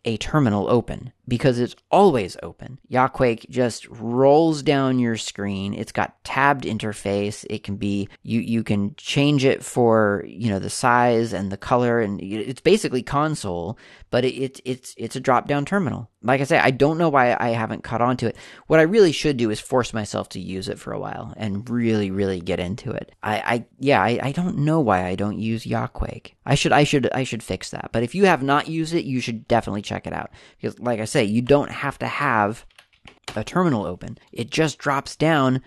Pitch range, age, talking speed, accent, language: 105-135 Hz, 30-49, 215 wpm, American, English